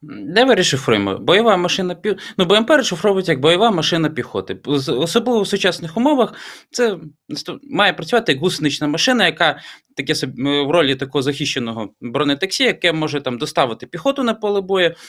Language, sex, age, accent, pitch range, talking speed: Ukrainian, male, 20-39, native, 130-185 Hz, 140 wpm